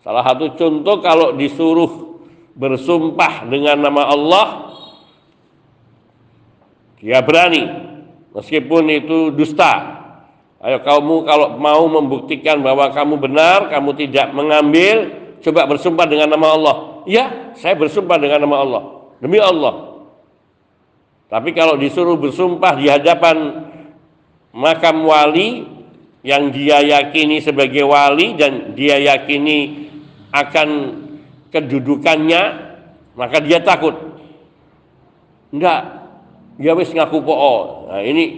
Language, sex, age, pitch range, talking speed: Indonesian, male, 50-69, 145-170 Hz, 100 wpm